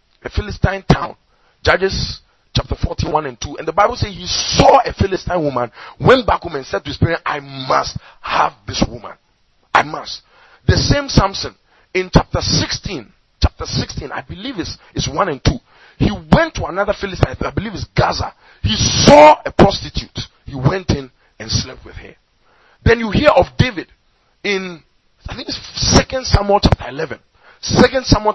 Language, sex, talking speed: English, male, 175 wpm